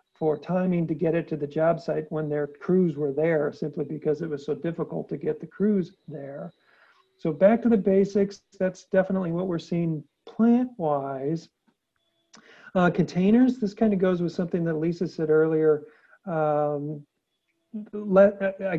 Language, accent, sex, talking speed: English, American, male, 155 wpm